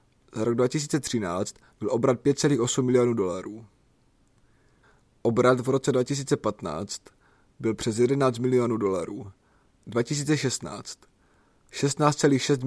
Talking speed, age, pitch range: 90 wpm, 30-49, 120-140 Hz